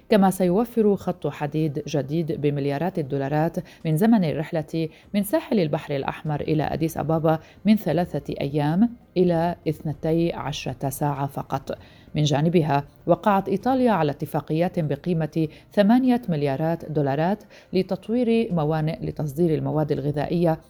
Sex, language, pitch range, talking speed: female, Arabic, 145-180 Hz, 115 wpm